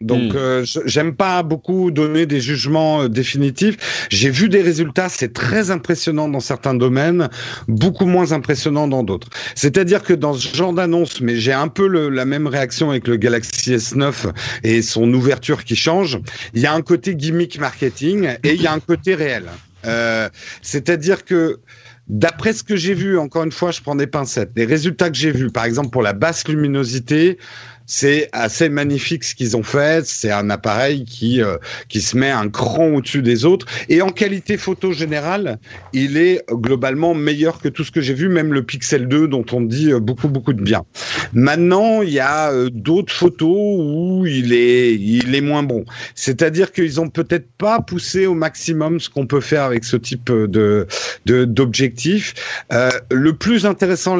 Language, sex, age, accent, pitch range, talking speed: French, male, 50-69, French, 125-170 Hz, 185 wpm